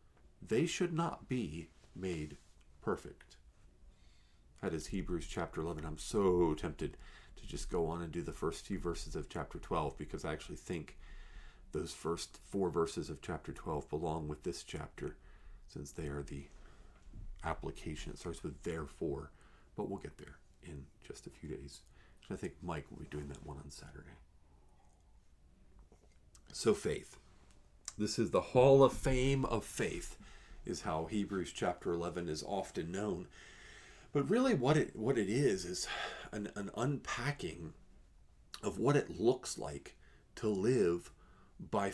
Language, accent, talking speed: English, American, 150 wpm